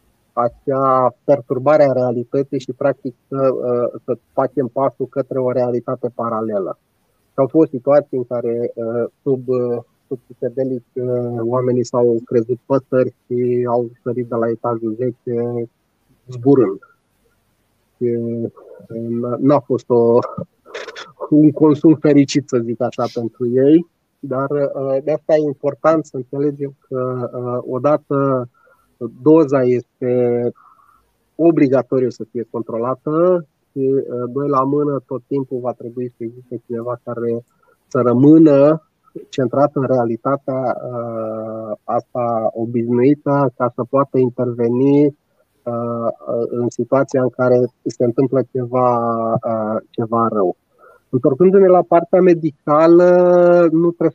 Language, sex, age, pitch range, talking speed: Romanian, male, 30-49, 120-145 Hz, 110 wpm